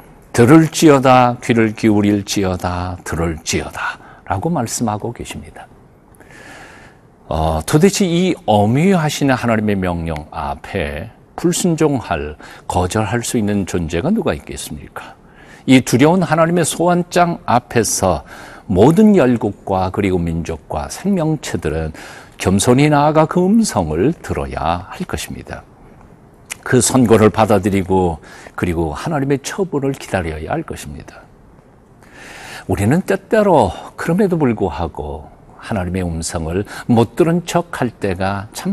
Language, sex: Korean, male